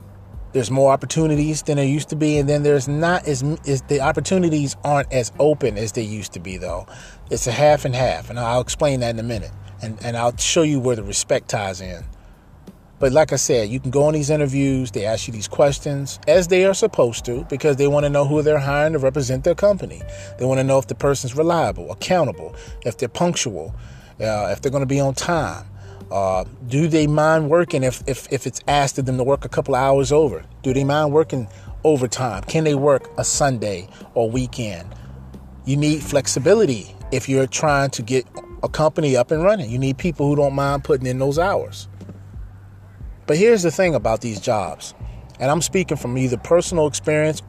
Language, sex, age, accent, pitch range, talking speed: English, male, 30-49, American, 105-150 Hz, 210 wpm